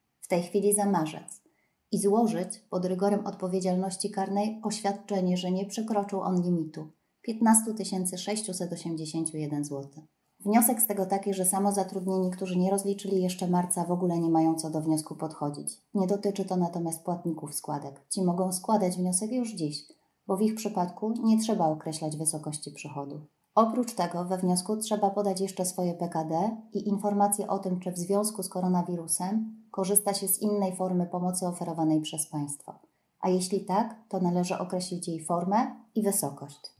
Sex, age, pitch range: female, 30-49, 170-200 Hz